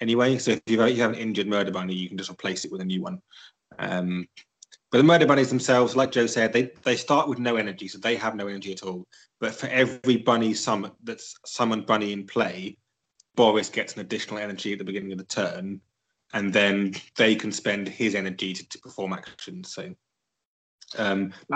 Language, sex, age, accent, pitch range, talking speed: English, male, 20-39, British, 95-120 Hz, 210 wpm